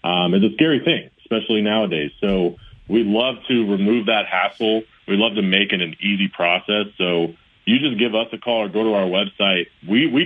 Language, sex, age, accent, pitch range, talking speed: English, male, 30-49, American, 95-120 Hz, 210 wpm